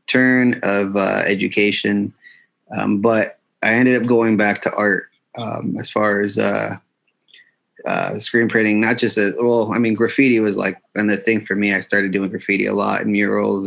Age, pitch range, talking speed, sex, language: 30-49, 100-115 Hz, 190 wpm, male, English